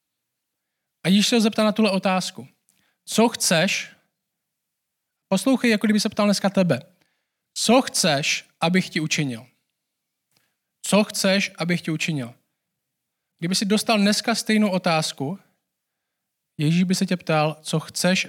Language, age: Czech, 20-39